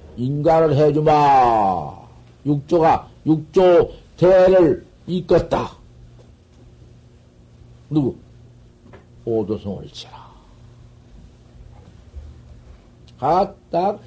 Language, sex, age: Korean, male, 50-69